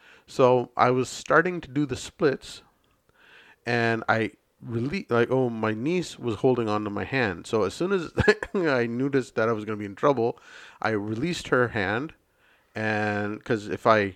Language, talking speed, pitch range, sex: English, 180 wpm, 105-155 Hz, male